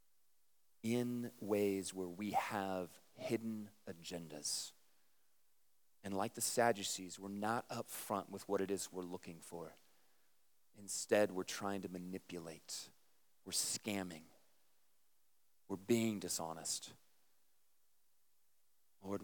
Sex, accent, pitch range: male, American, 95-120 Hz